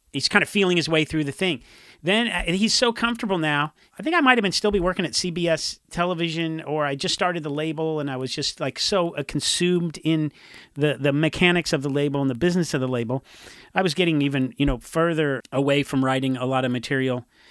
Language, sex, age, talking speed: English, male, 40-59, 230 wpm